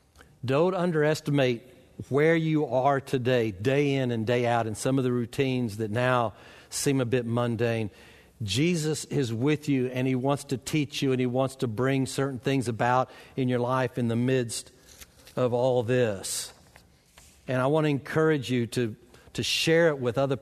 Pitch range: 120-140 Hz